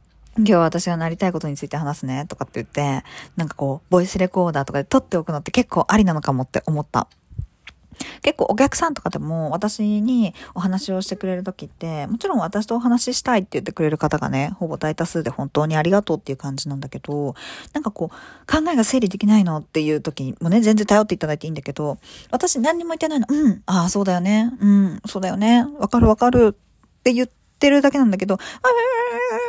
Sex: female